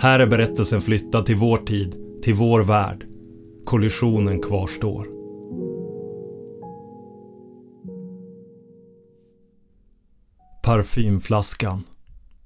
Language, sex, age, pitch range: Swedish, male, 30-49, 100-120 Hz